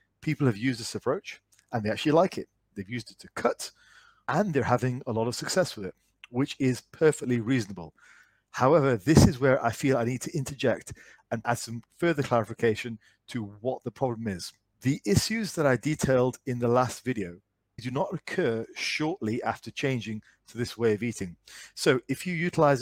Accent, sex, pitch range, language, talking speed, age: British, male, 115-140 Hz, English, 190 wpm, 40-59